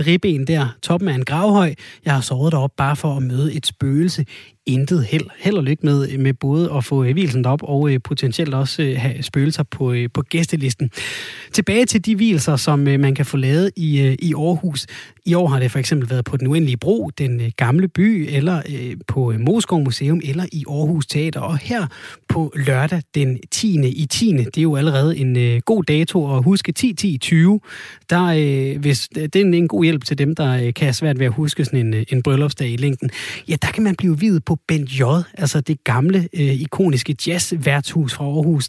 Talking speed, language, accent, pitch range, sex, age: 200 wpm, Danish, native, 135-170 Hz, male, 30-49